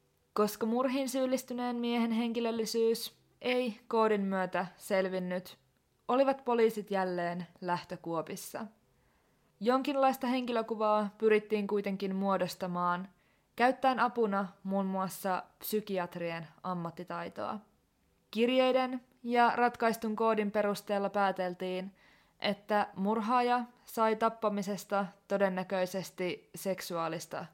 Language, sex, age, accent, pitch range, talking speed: Finnish, female, 20-39, native, 185-235 Hz, 80 wpm